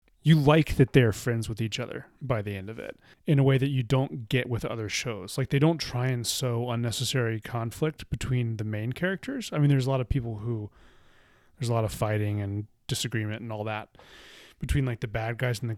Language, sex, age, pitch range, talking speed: English, male, 30-49, 115-135 Hz, 230 wpm